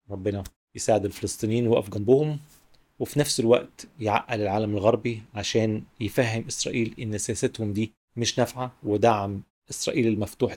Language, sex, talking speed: Arabic, male, 125 wpm